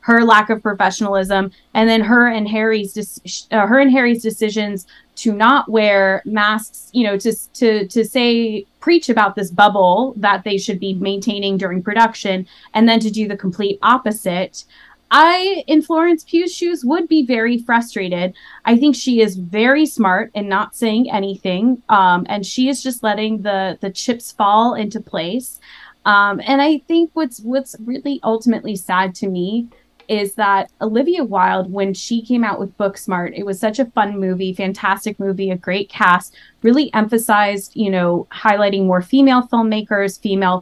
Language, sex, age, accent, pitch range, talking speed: English, female, 20-39, American, 200-245 Hz, 170 wpm